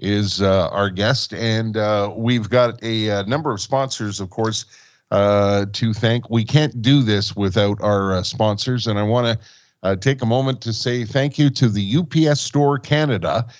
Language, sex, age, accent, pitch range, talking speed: English, male, 50-69, American, 105-135 Hz, 185 wpm